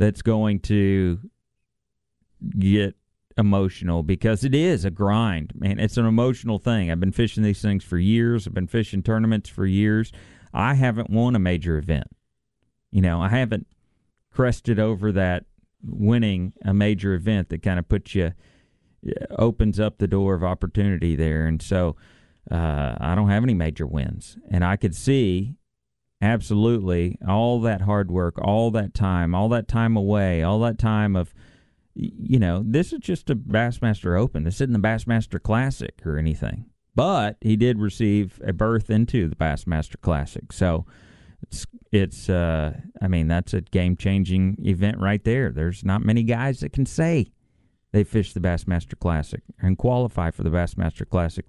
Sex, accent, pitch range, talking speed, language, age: male, American, 90-110 Hz, 165 wpm, English, 40-59